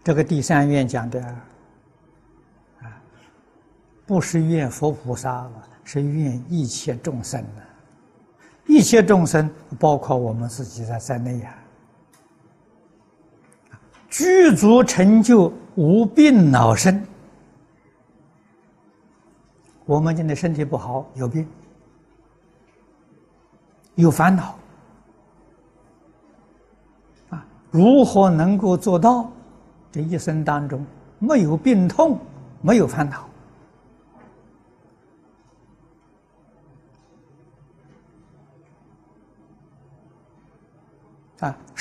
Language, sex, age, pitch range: Chinese, male, 60-79, 135-200 Hz